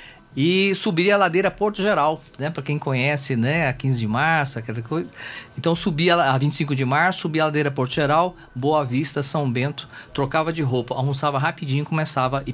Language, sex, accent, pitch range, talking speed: Portuguese, male, Brazilian, 120-150 Hz, 185 wpm